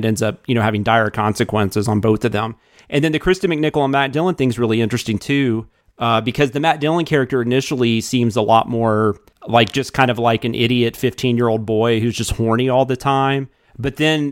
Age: 30-49